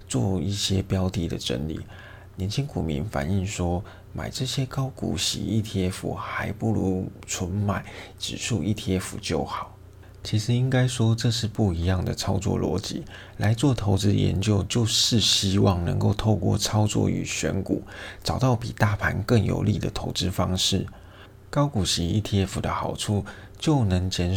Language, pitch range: Chinese, 95-110 Hz